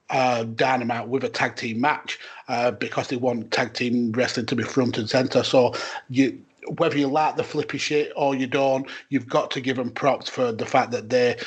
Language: English